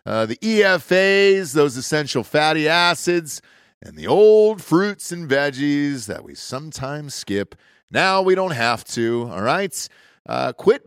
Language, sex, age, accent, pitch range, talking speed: English, male, 40-59, American, 110-160 Hz, 145 wpm